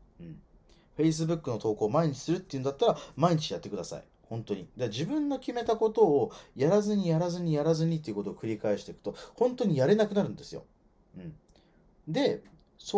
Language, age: Japanese, 30-49